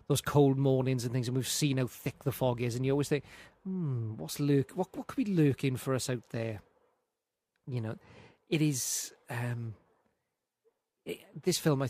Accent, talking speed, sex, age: British, 190 wpm, male, 30-49